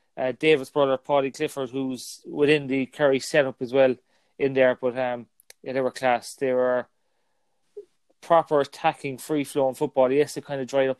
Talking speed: 175 wpm